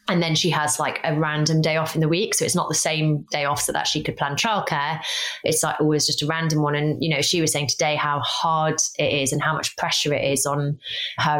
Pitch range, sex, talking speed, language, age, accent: 150-165 Hz, female, 270 wpm, English, 20-39, British